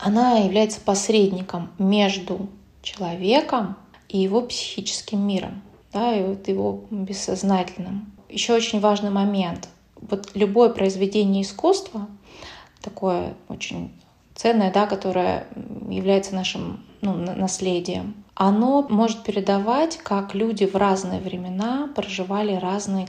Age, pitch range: 20-39, 190-220 Hz